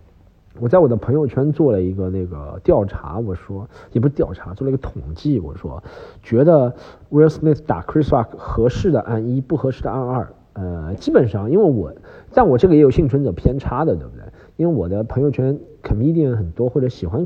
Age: 50-69